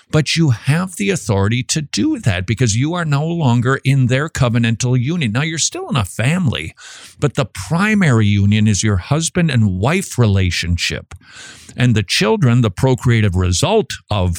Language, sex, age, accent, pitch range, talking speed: English, male, 50-69, American, 105-140 Hz, 165 wpm